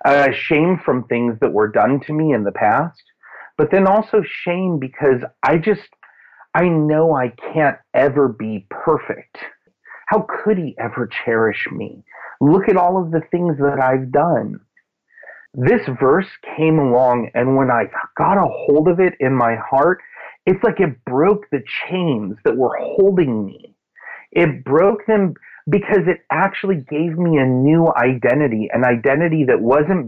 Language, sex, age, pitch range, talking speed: English, male, 30-49, 135-185 Hz, 160 wpm